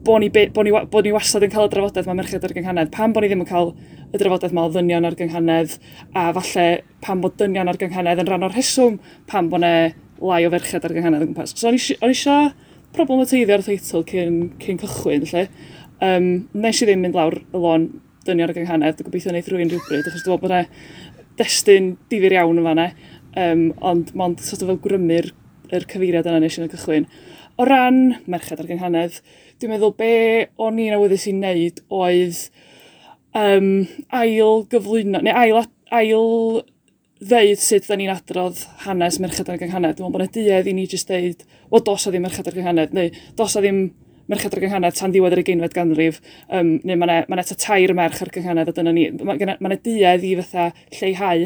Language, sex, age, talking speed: English, female, 20-39, 200 wpm